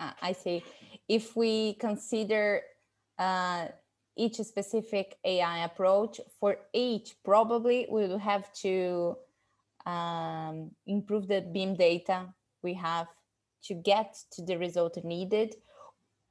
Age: 20-39